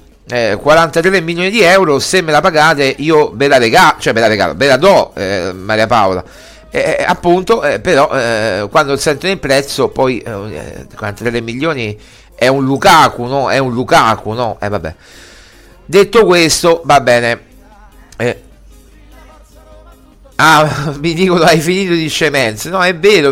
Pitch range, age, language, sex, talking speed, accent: 120-180 Hz, 50-69, Italian, male, 155 wpm, native